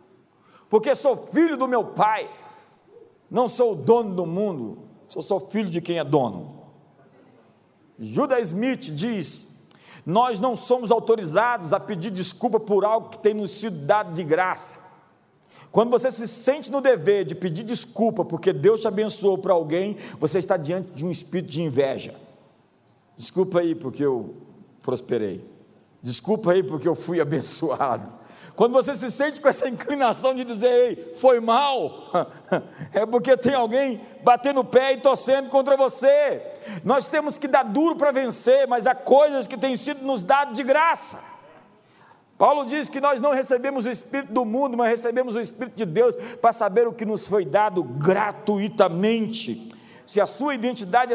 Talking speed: 165 wpm